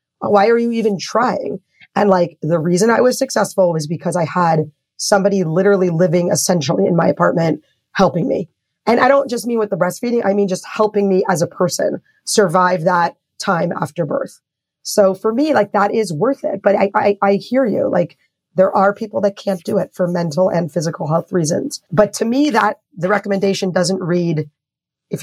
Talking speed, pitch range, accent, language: 195 wpm, 175-205 Hz, American, English